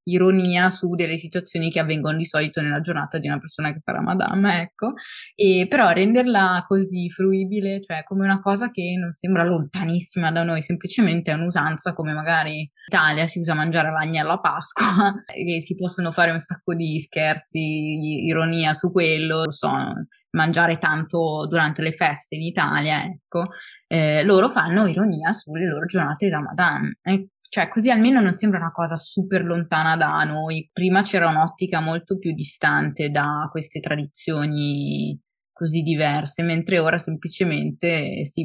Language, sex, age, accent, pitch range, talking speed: Italian, female, 20-39, native, 160-185 Hz, 160 wpm